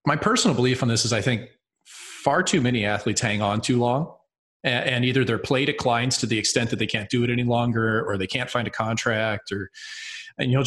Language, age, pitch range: English, 30-49, 115-140 Hz